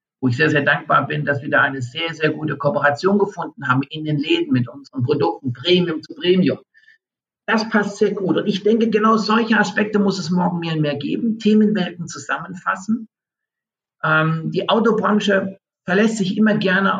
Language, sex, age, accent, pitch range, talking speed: German, male, 50-69, German, 155-215 Hz, 180 wpm